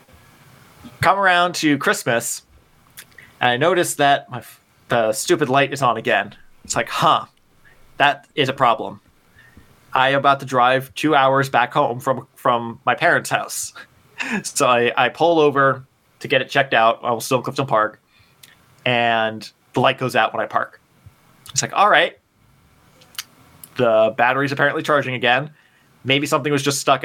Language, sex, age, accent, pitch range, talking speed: English, male, 20-39, American, 120-140 Hz, 160 wpm